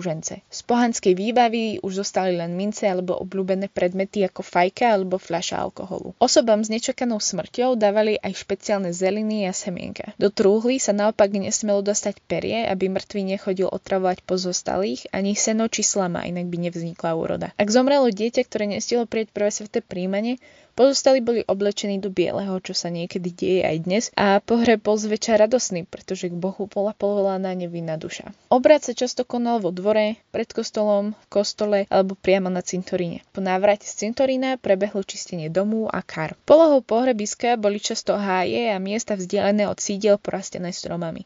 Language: Slovak